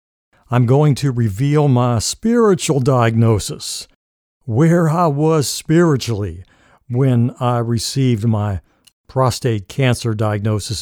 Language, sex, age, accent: English, male, 60-79, American